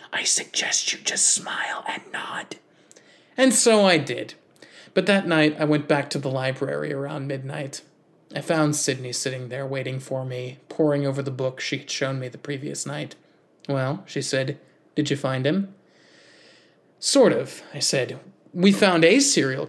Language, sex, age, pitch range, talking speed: English, male, 20-39, 140-175 Hz, 170 wpm